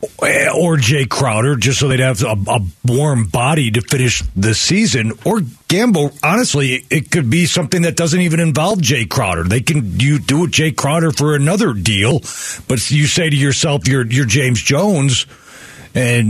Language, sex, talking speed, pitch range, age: English, male, 175 wpm, 125-160 Hz, 40-59